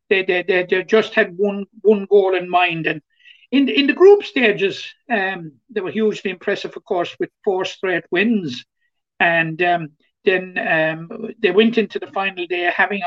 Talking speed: 180 wpm